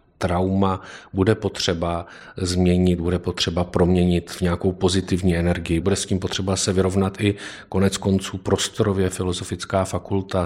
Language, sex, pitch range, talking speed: Czech, male, 85-95 Hz, 130 wpm